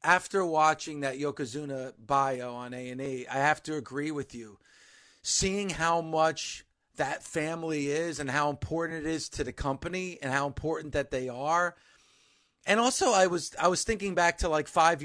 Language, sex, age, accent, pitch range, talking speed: English, male, 30-49, American, 150-185 Hz, 180 wpm